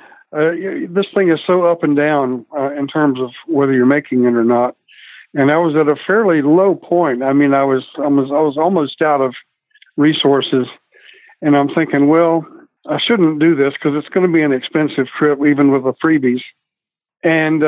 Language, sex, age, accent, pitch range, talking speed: English, male, 60-79, American, 130-160 Hz, 200 wpm